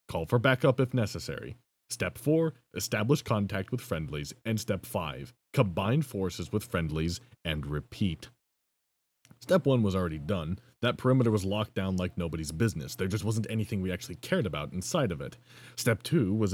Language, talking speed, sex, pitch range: English, 170 wpm, male, 90-125 Hz